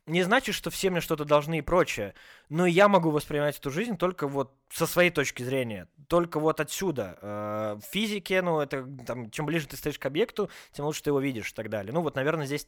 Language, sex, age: Russian, male, 20-39